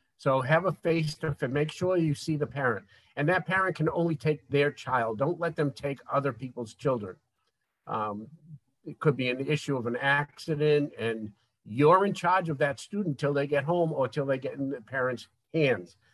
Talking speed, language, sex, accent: 200 wpm, English, male, American